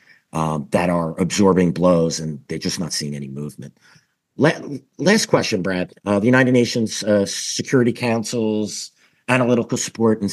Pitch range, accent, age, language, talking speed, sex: 85-110 Hz, American, 50-69, English, 150 wpm, male